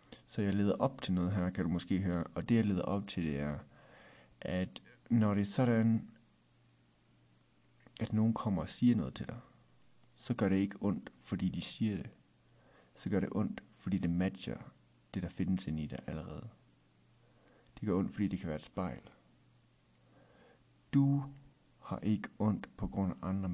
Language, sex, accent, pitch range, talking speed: Danish, male, native, 85-115 Hz, 185 wpm